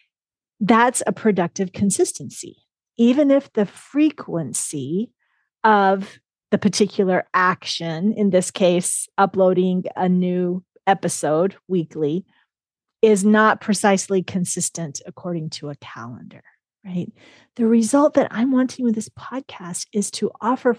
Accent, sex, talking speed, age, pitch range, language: American, female, 115 wpm, 40-59, 180-230 Hz, English